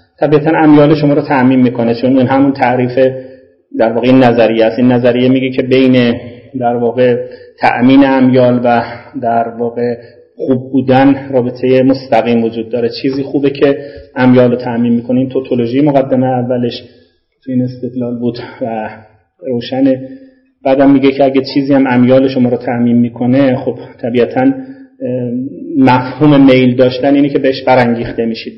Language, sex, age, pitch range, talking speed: Persian, male, 30-49, 125-145 Hz, 145 wpm